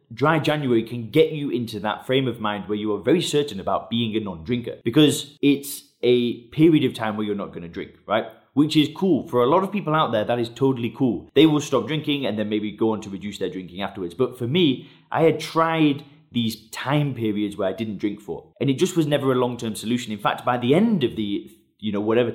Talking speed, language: 245 wpm, English